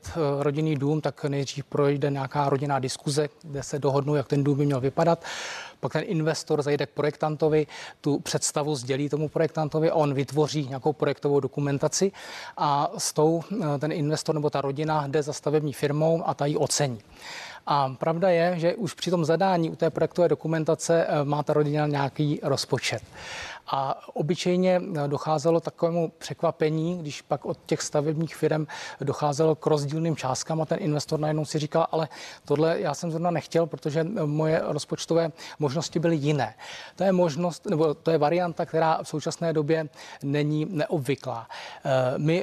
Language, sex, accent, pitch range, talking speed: Czech, male, native, 145-165 Hz, 160 wpm